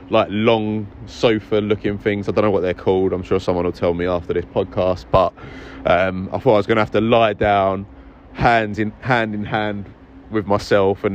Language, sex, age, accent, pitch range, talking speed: English, male, 20-39, British, 90-105 Hz, 215 wpm